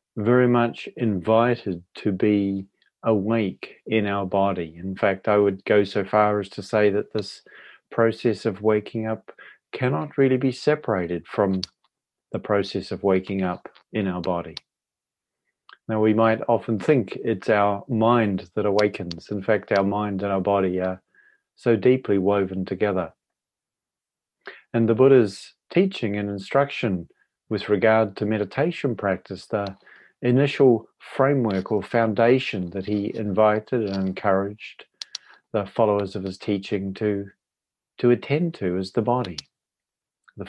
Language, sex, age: English, male, 40-59